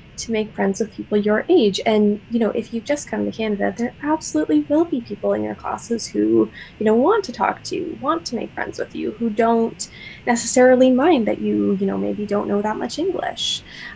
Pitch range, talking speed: 190-275 Hz, 225 wpm